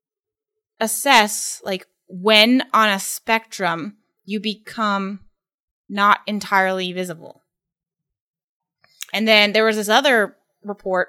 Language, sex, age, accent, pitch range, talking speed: English, female, 20-39, American, 185-230 Hz, 95 wpm